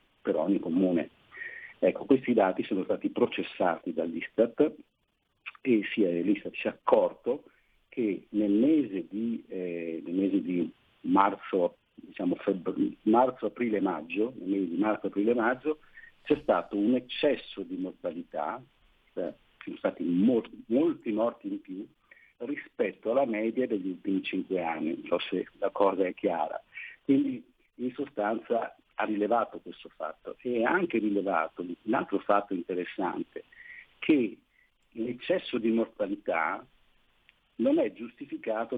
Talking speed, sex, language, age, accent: 120 wpm, male, Italian, 50-69, native